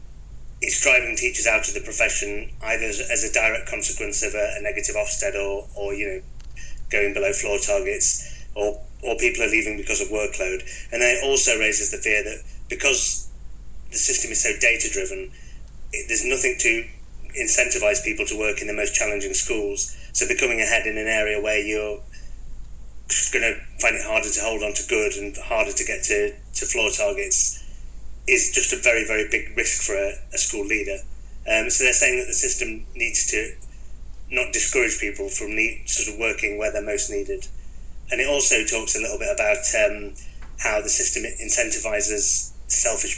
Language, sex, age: English, male, 30-49